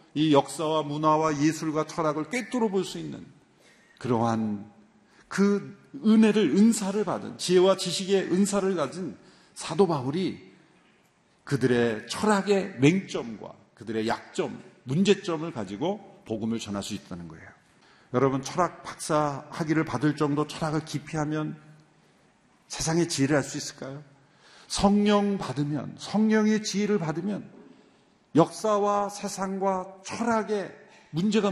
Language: Korean